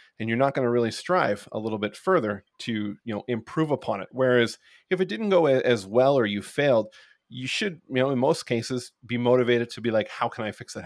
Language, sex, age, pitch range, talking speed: English, male, 30-49, 110-130 Hz, 245 wpm